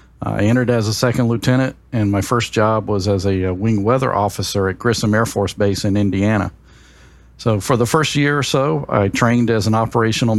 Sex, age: male, 50-69